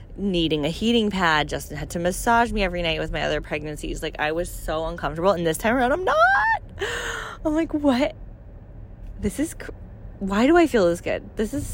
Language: English